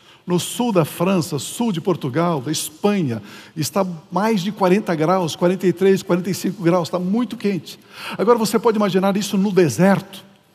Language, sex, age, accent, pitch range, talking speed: Portuguese, male, 60-79, Brazilian, 180-230 Hz, 155 wpm